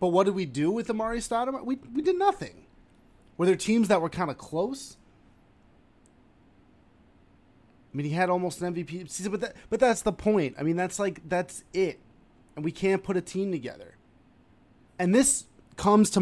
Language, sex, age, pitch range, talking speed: English, male, 30-49, 130-180 Hz, 180 wpm